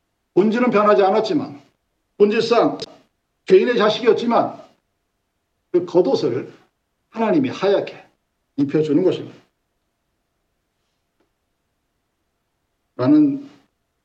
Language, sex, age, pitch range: Korean, male, 50-69, 145-205 Hz